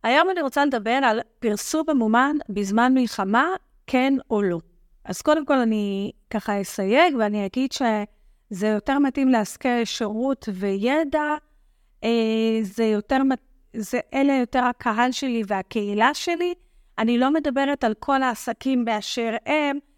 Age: 30-49